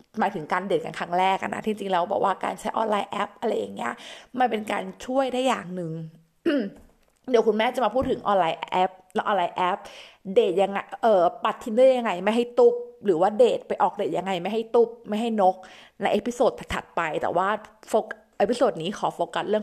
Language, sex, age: Thai, female, 20-39